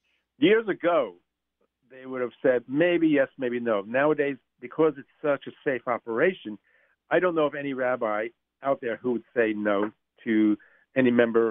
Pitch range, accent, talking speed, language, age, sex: 115-150 Hz, American, 165 wpm, English, 50-69, male